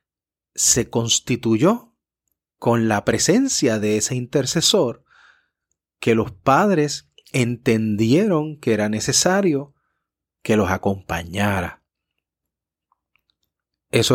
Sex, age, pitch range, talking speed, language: male, 30-49, 105-145 Hz, 80 wpm, Spanish